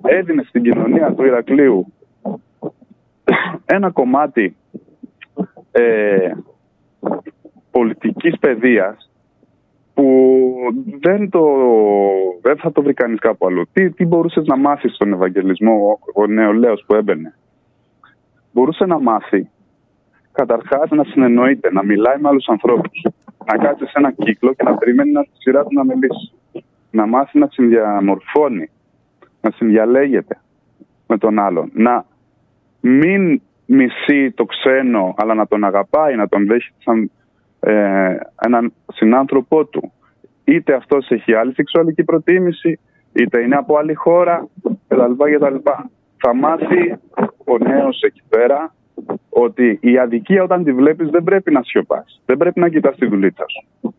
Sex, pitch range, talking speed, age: male, 115-165 Hz, 130 wpm, 20-39